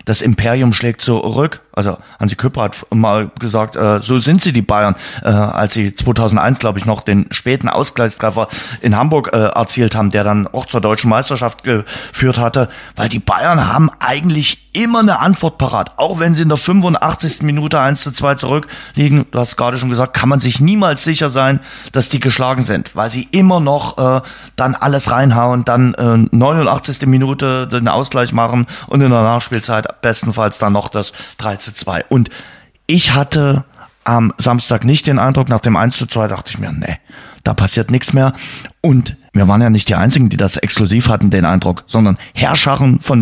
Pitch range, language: 110-135 Hz, German